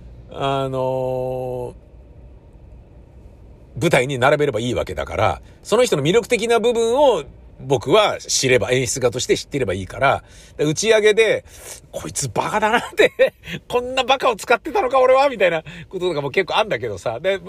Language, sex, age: Japanese, male, 50-69